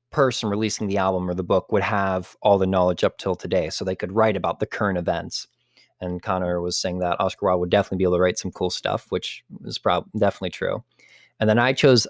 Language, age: English, 20-39